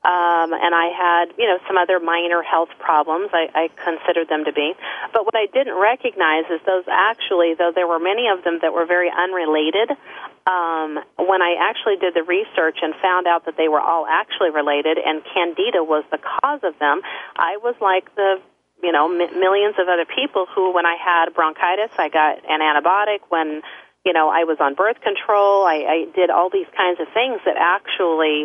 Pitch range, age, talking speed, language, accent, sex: 165-205 Hz, 40-59, 200 wpm, English, American, female